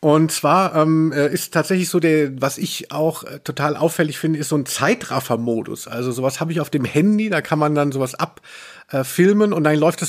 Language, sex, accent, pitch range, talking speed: German, male, German, 135-180 Hz, 215 wpm